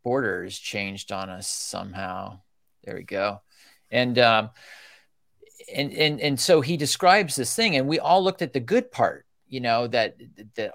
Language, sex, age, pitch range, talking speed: English, male, 40-59, 110-140 Hz, 165 wpm